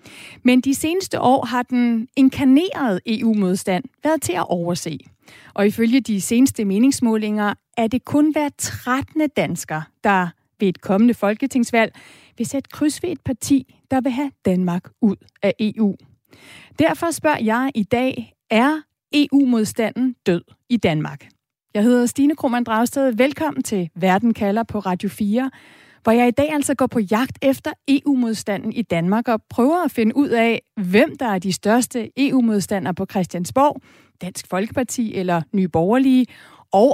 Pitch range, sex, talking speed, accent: 205-270 Hz, female, 155 wpm, native